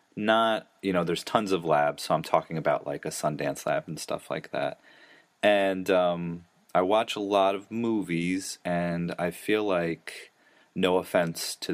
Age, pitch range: 30-49, 80-95 Hz